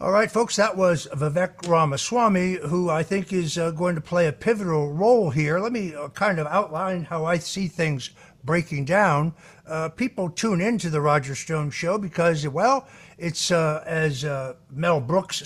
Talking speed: 180 wpm